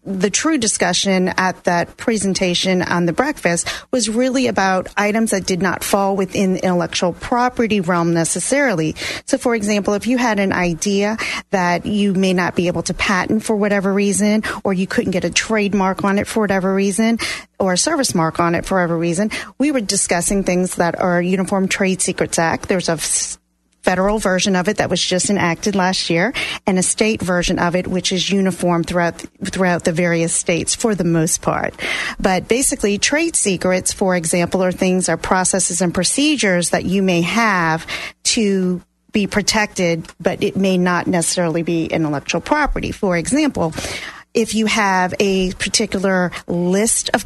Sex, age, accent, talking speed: female, 40-59, American, 175 wpm